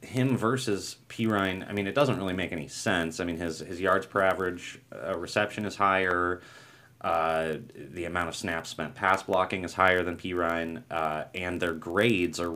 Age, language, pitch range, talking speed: 30-49, English, 80-100 Hz, 185 wpm